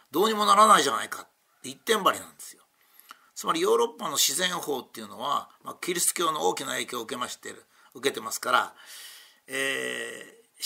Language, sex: Japanese, male